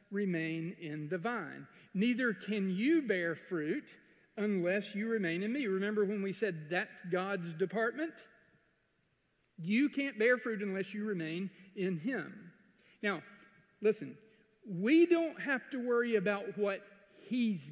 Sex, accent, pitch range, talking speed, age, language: male, American, 200-245 Hz, 135 wpm, 50-69, English